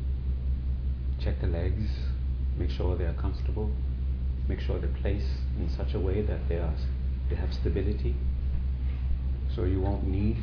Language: English